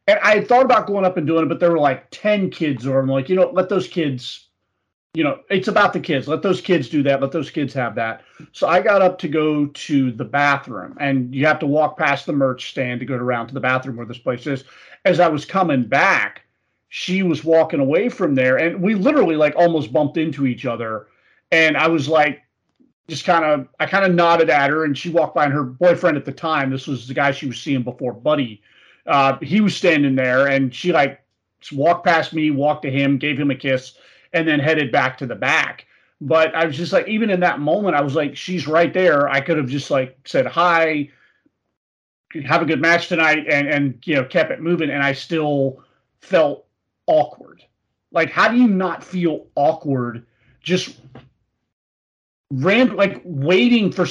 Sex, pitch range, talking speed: male, 135-175 Hz, 215 wpm